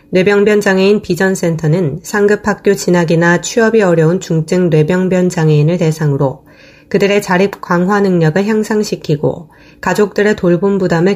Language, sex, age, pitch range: Korean, female, 20-39, 160-200 Hz